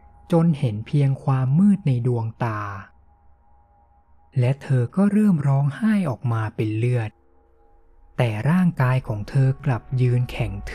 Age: 20-39